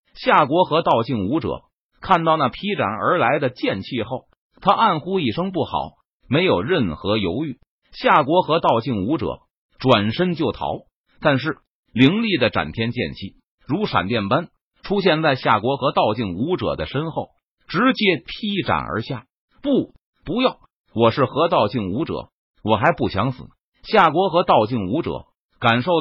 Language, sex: Chinese, male